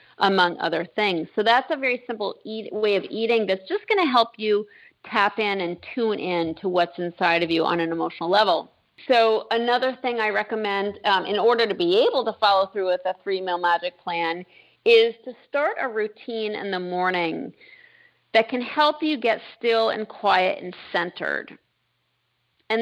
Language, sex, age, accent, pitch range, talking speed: English, female, 40-59, American, 190-255 Hz, 185 wpm